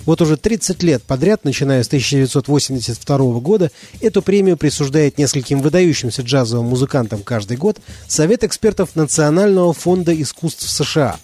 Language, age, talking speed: Russian, 30-49, 130 wpm